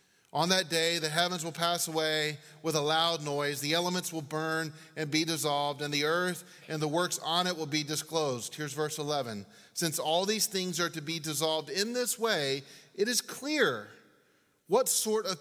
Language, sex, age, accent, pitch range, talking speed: English, male, 30-49, American, 140-180 Hz, 195 wpm